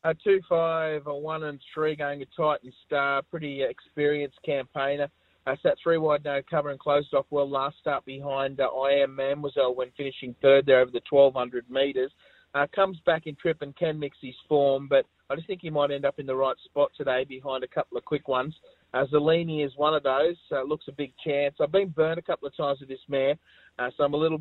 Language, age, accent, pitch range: English, 30-49, Australian, 130-150 Hz